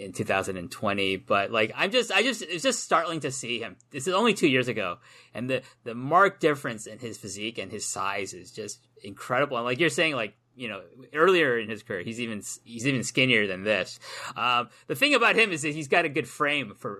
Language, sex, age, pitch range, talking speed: English, male, 30-49, 115-175 Hz, 230 wpm